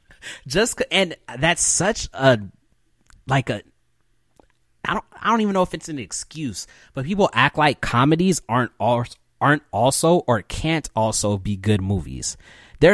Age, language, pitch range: 20-39, English, 105-140 Hz